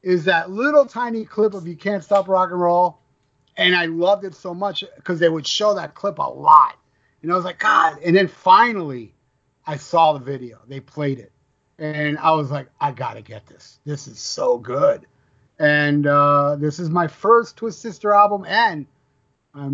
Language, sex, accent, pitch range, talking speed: English, male, American, 145-195 Hz, 200 wpm